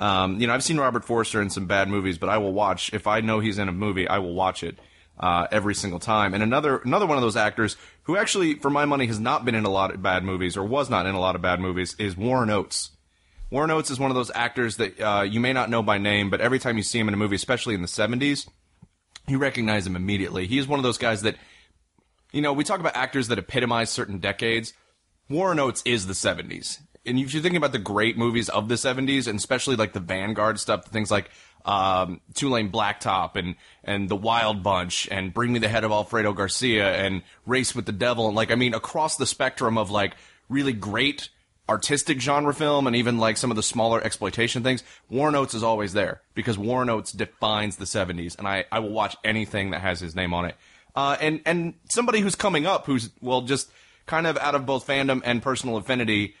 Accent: American